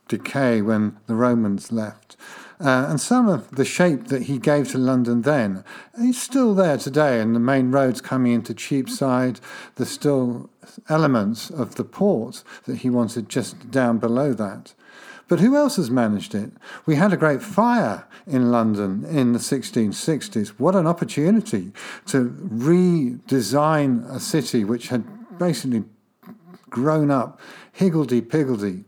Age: 50-69